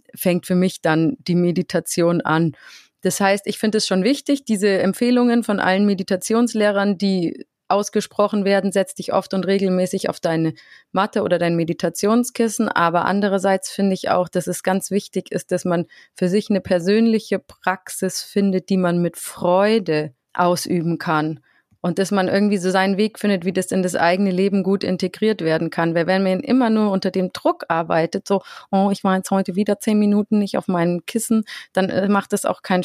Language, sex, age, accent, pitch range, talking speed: German, female, 30-49, German, 170-205 Hz, 185 wpm